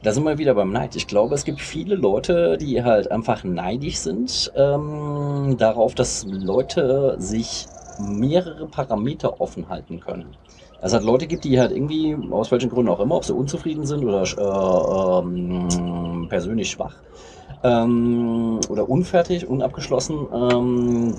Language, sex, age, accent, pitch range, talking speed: German, male, 30-49, German, 105-145 Hz, 150 wpm